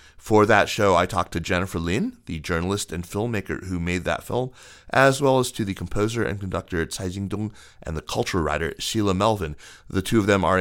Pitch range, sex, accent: 85-100 Hz, male, American